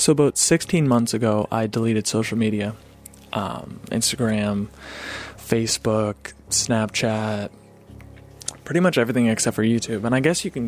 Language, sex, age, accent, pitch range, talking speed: English, male, 20-39, American, 105-120 Hz, 135 wpm